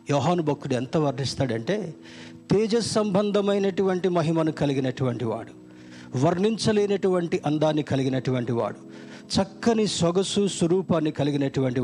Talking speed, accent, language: 85 wpm, native, Telugu